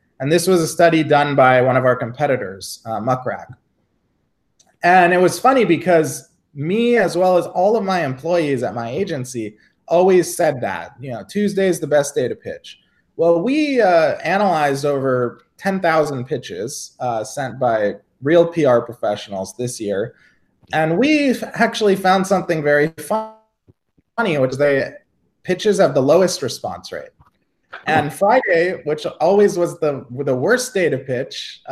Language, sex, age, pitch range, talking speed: English, male, 20-39, 140-190 Hz, 160 wpm